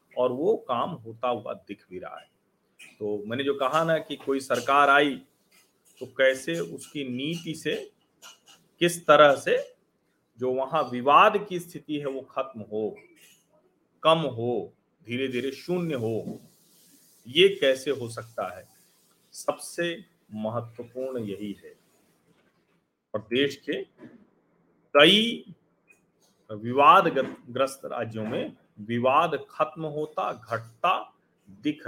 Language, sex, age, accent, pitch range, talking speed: Hindi, male, 40-59, native, 120-165 Hz, 120 wpm